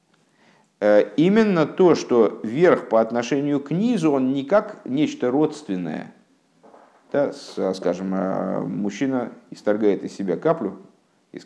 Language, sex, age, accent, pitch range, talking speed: Russian, male, 50-69, native, 105-150 Hz, 105 wpm